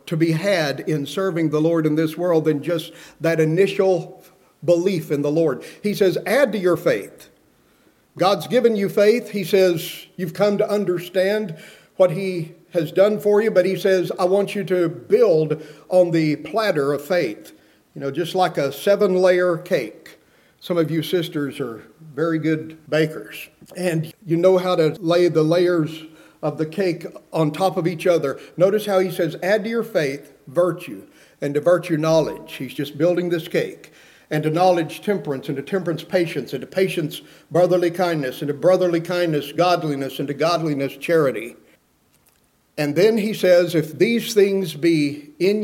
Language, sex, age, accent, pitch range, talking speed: English, male, 50-69, American, 150-185 Hz, 175 wpm